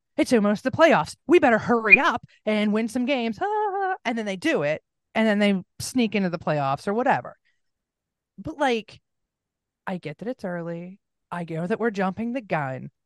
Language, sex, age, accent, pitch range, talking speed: English, female, 30-49, American, 170-235 Hz, 185 wpm